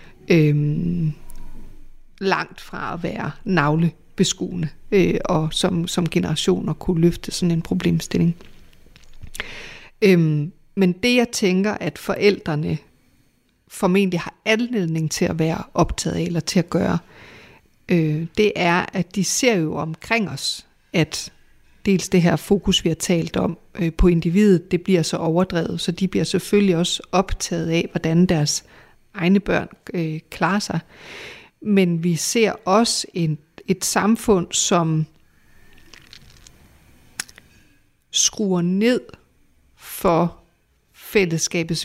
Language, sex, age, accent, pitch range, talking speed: Danish, female, 50-69, native, 165-195 Hz, 115 wpm